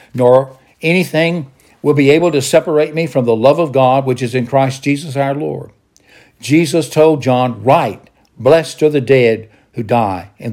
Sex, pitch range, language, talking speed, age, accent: male, 115-150 Hz, English, 175 wpm, 60-79, American